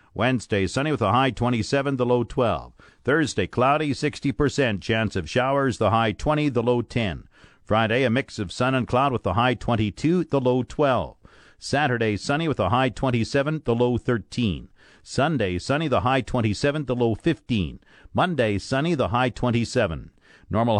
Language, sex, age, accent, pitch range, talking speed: English, male, 50-69, American, 110-145 Hz, 165 wpm